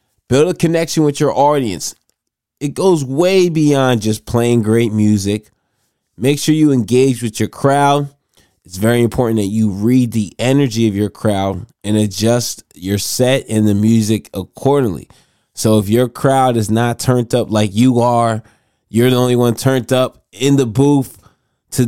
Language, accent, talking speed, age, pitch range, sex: English, American, 165 wpm, 20-39, 105-130 Hz, male